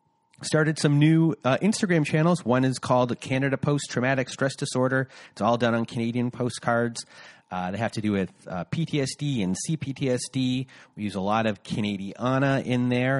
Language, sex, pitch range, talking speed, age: English, male, 100-135 Hz, 175 wpm, 30-49